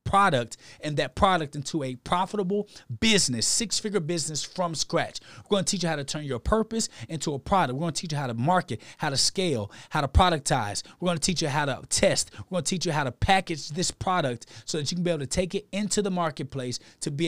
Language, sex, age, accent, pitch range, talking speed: English, male, 30-49, American, 135-175 Hz, 245 wpm